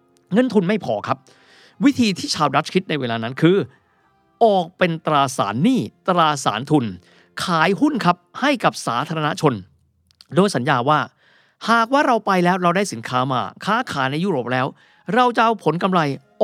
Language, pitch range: Thai, 125-185 Hz